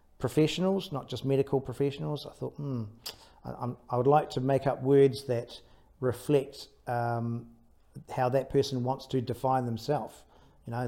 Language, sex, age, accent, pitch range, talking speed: English, male, 40-59, Australian, 120-145 Hz, 155 wpm